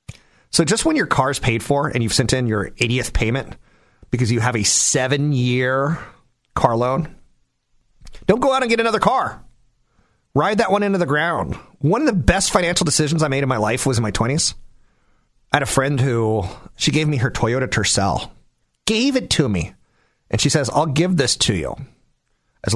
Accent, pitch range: American, 120-165 Hz